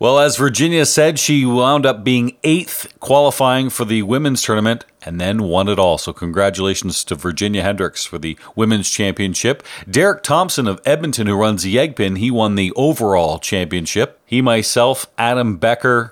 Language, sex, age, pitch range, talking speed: English, male, 40-59, 105-140 Hz, 170 wpm